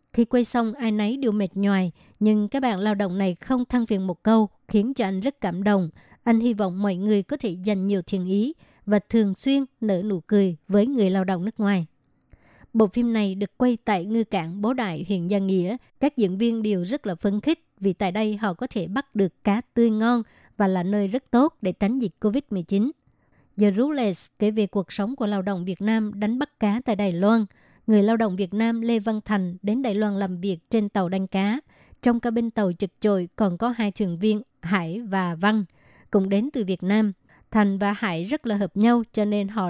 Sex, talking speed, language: male, 230 wpm, Vietnamese